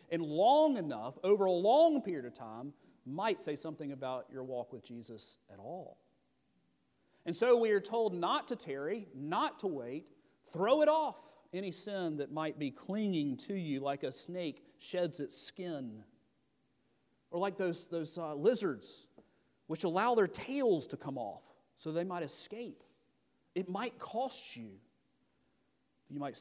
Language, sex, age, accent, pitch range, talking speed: English, male, 40-59, American, 140-205 Hz, 160 wpm